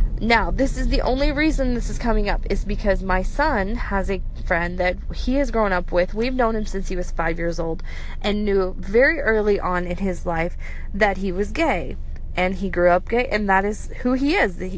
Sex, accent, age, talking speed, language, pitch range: female, American, 20-39, 225 wpm, English, 185-230 Hz